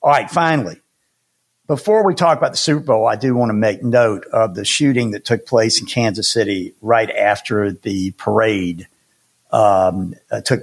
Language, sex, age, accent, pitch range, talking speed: English, male, 50-69, American, 110-150 Hz, 175 wpm